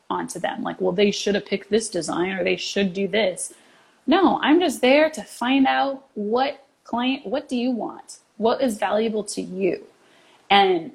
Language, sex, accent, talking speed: English, female, American, 185 wpm